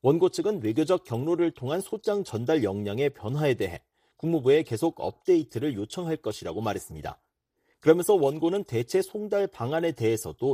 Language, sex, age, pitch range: Korean, male, 40-59, 140-185 Hz